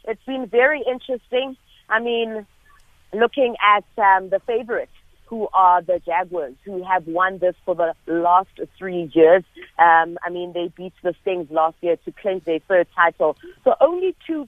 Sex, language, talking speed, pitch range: female, English, 170 wpm, 175-225 Hz